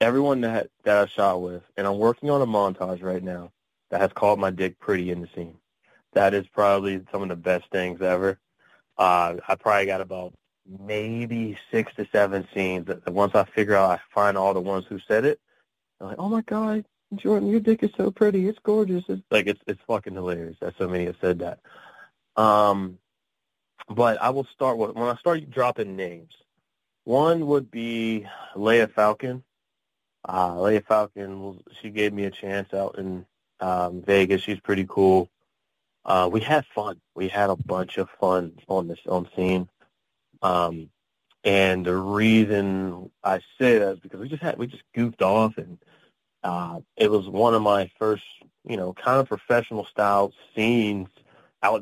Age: 20-39